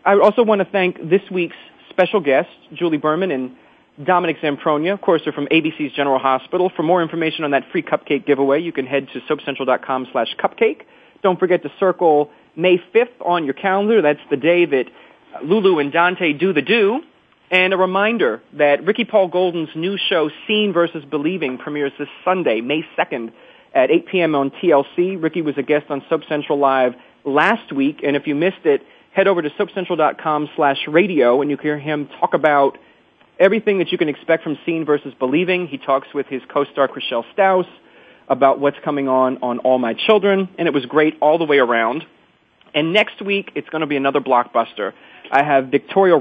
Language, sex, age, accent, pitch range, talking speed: English, male, 30-49, American, 140-185 Hz, 195 wpm